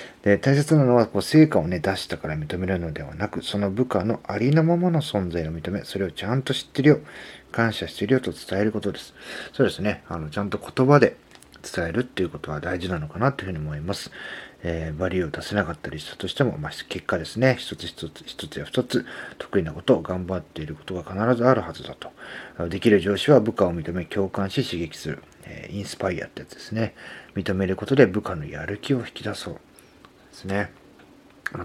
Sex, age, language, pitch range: male, 40-59, Japanese, 90-125 Hz